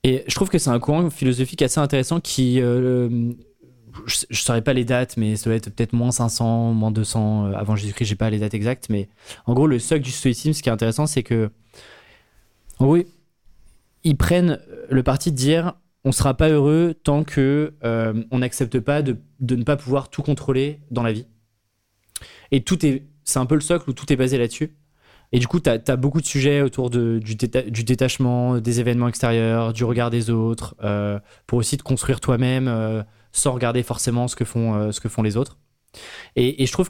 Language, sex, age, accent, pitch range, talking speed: French, male, 20-39, French, 115-140 Hz, 215 wpm